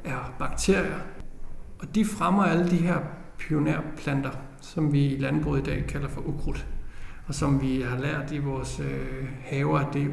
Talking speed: 180 wpm